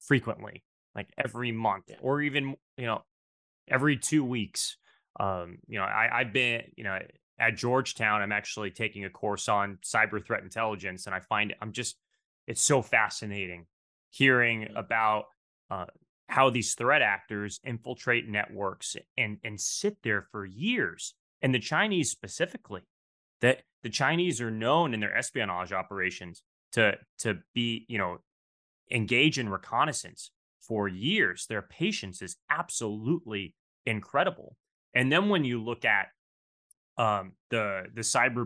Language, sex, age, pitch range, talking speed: English, male, 20-39, 95-120 Hz, 140 wpm